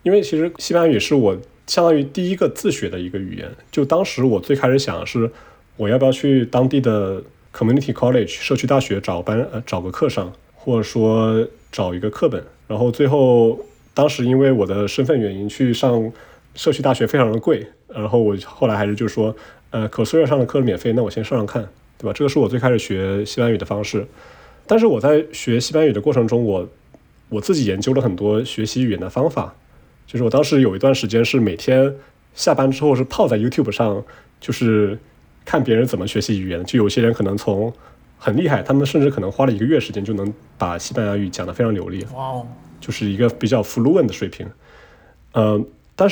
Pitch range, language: 105-135 Hz, Chinese